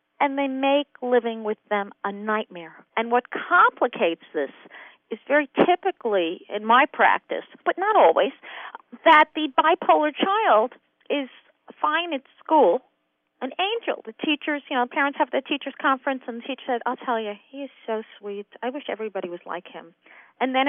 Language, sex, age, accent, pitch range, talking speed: English, female, 50-69, American, 240-340 Hz, 170 wpm